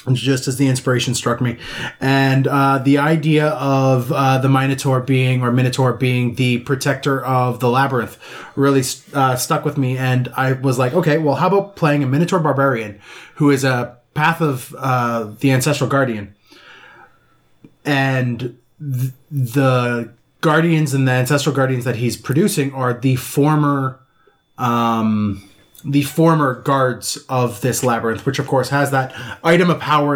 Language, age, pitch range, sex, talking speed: English, 20-39, 120-140 Hz, male, 155 wpm